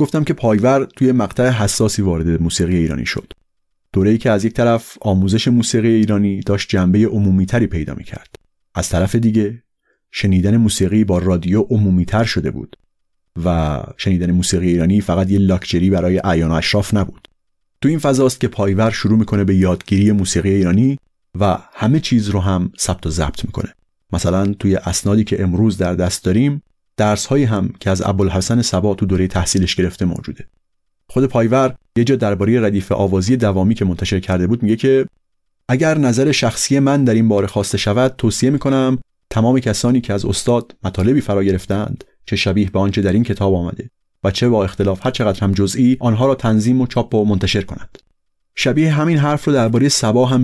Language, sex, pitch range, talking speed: Persian, male, 95-120 Hz, 175 wpm